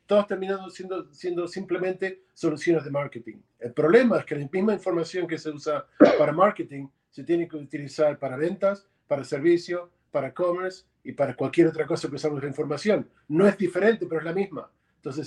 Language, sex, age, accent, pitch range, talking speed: Spanish, male, 40-59, Argentinian, 150-185 Hz, 185 wpm